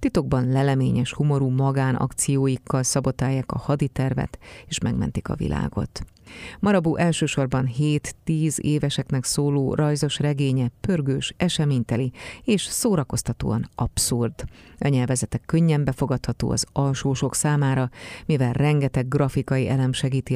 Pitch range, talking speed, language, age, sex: 130-150 Hz, 105 wpm, Hungarian, 30-49, female